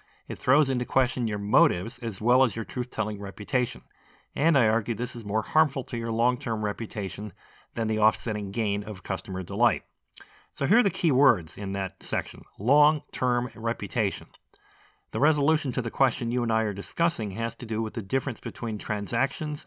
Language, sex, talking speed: English, male, 180 wpm